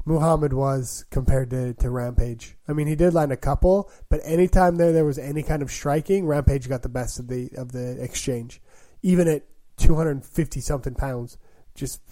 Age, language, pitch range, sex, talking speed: 20-39, English, 120-155 Hz, male, 180 wpm